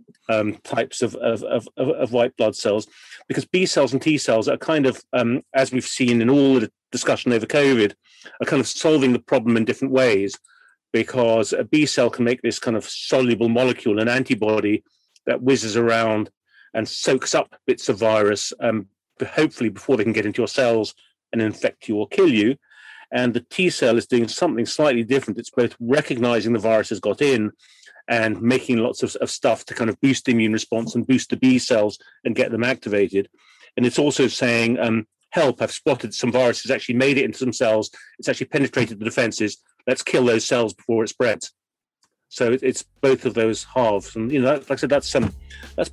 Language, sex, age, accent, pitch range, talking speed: English, male, 40-59, British, 110-130 Hz, 200 wpm